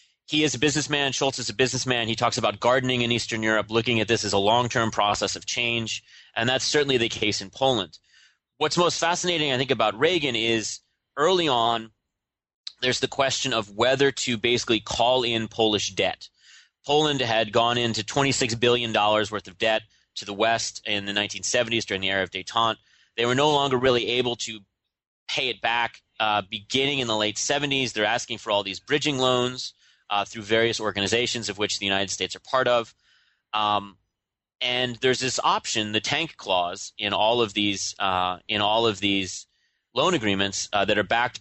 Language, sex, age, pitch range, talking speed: English, male, 30-49, 105-130 Hz, 185 wpm